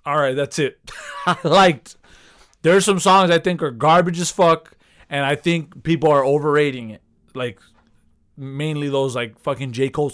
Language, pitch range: English, 130-170 Hz